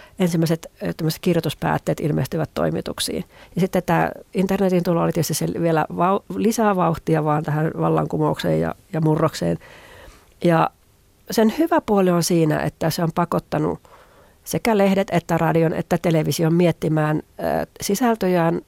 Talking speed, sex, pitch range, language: 125 wpm, female, 160-195 Hz, Finnish